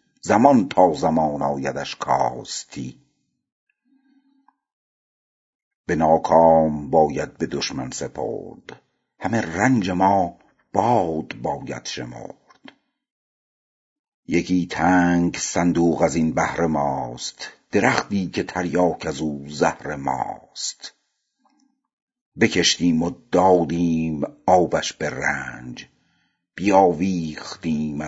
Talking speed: 80 wpm